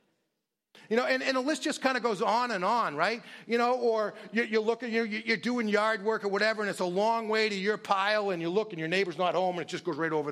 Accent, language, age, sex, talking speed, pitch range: American, English, 40-59, male, 285 wpm, 175-235 Hz